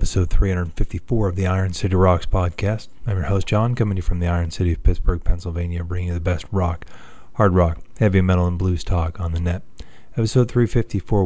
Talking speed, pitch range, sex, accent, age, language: 210 wpm, 85-95 Hz, male, American, 30-49, English